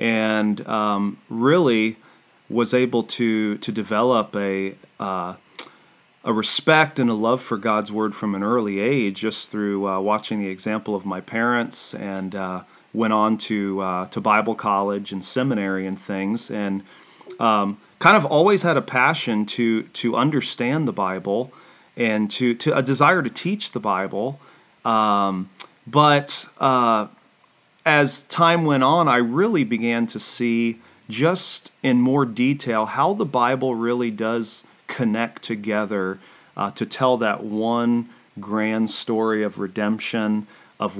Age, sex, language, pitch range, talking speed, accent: 30-49, male, English, 105-130 Hz, 145 wpm, American